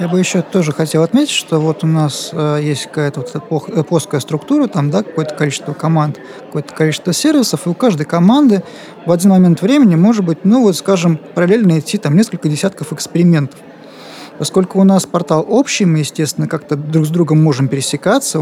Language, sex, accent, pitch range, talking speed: Russian, male, native, 155-195 Hz, 180 wpm